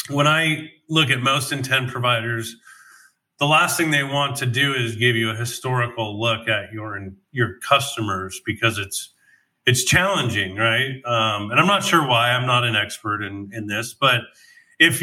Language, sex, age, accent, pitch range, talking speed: English, male, 30-49, American, 115-155 Hz, 175 wpm